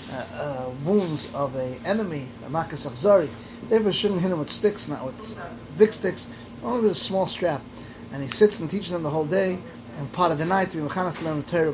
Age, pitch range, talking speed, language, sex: 30-49, 145-185 Hz, 195 wpm, English, male